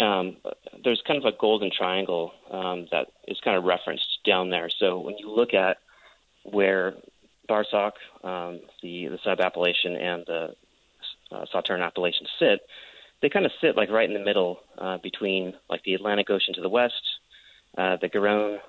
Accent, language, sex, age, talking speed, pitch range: American, English, male, 30-49, 170 wpm, 90-100 Hz